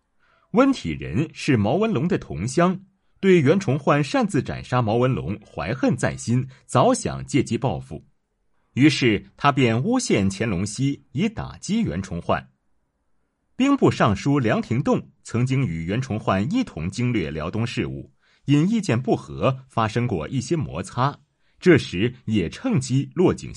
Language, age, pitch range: Chinese, 30-49, 110-170 Hz